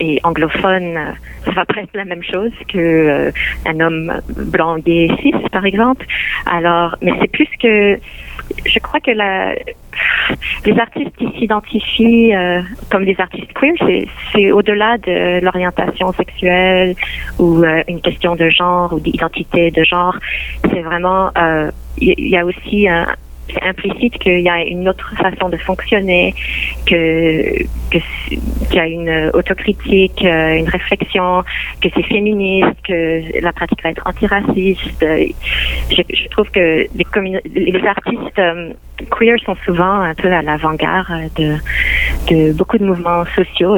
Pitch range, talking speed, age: 165-200 Hz, 145 wpm, 30-49